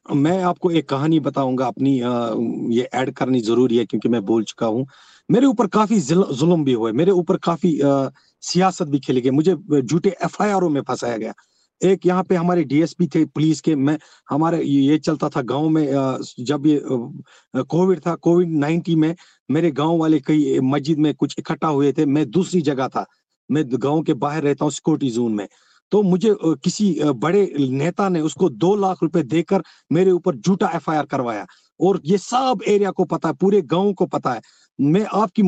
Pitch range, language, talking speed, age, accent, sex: 150-190 Hz, Hindi, 190 wpm, 50-69, native, male